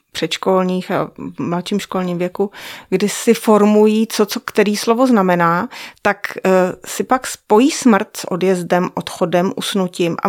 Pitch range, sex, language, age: 185-210 Hz, female, Czech, 30-49